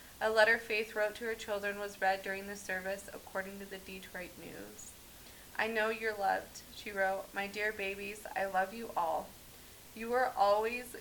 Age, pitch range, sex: 20-39, 195-220 Hz, female